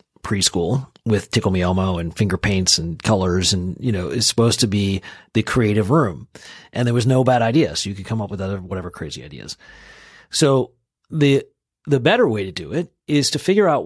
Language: English